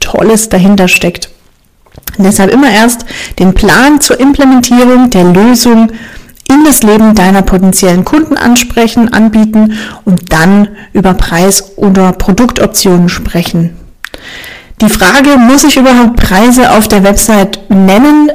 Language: German